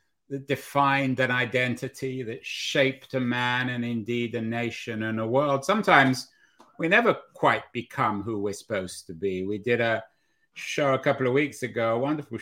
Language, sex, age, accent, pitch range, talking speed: English, male, 50-69, British, 120-140 Hz, 175 wpm